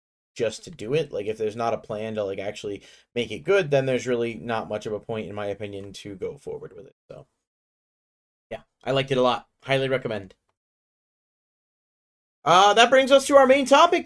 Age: 30-49